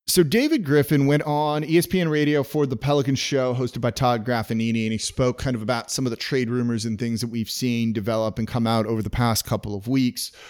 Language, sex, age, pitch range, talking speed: English, male, 30-49, 115-150 Hz, 235 wpm